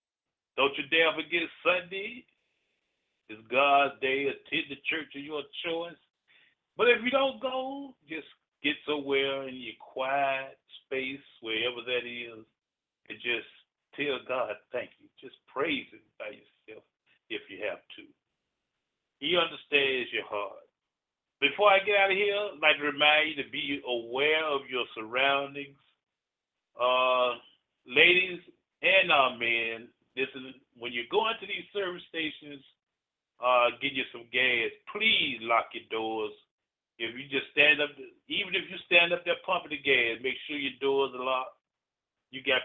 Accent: American